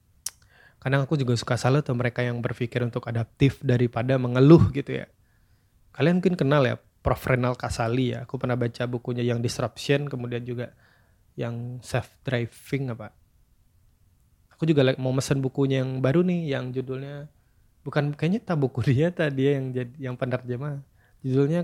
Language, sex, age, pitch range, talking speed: Indonesian, male, 20-39, 120-140 Hz, 150 wpm